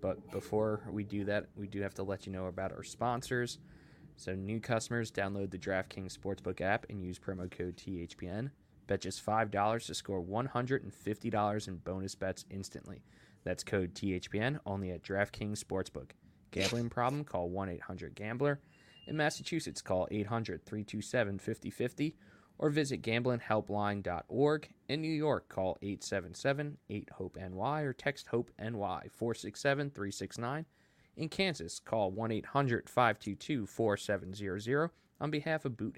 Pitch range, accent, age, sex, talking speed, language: 95-130 Hz, American, 20-39, male, 130 wpm, English